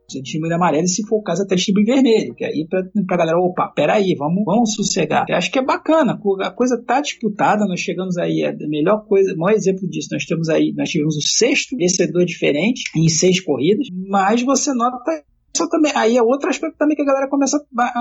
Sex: male